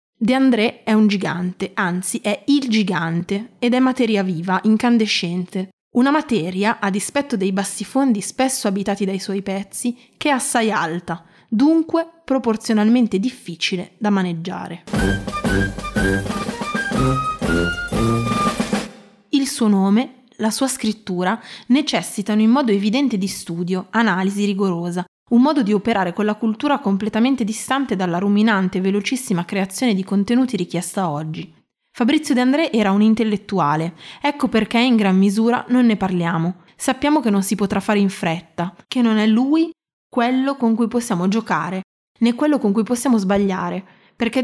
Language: Italian